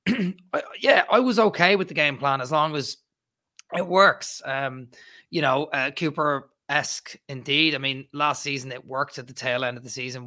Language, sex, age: English, male, 20-39